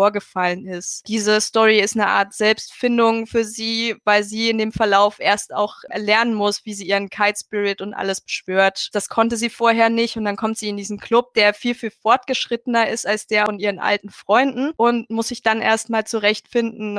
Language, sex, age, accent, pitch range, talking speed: German, female, 20-39, German, 205-245 Hz, 200 wpm